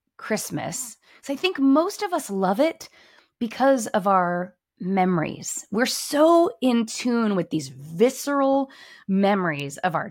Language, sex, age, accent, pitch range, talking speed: English, female, 20-39, American, 160-215 Hz, 135 wpm